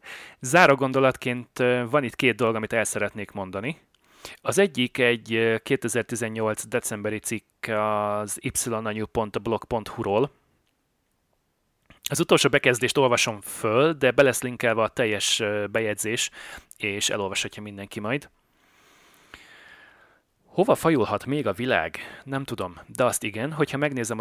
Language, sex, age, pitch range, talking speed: Hungarian, male, 30-49, 110-130 Hz, 115 wpm